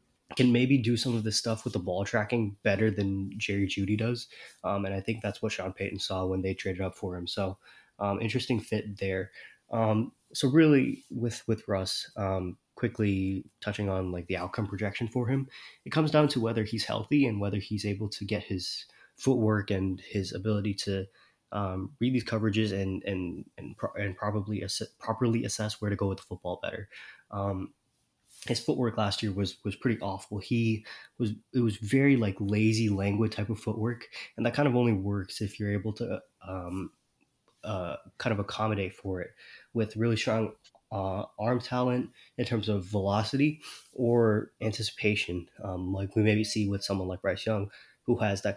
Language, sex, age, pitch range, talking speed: English, male, 20-39, 95-115 Hz, 185 wpm